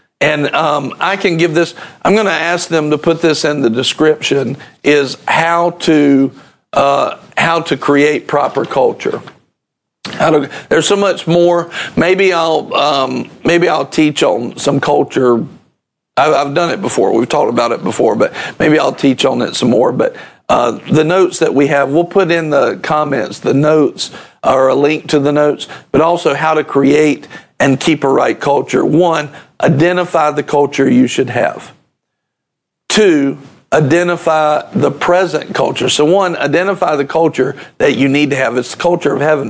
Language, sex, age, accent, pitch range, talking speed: English, male, 50-69, American, 145-175 Hz, 175 wpm